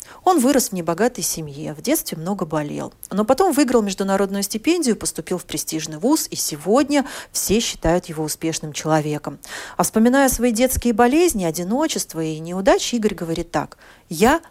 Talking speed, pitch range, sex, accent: 155 wpm, 165-230 Hz, female, native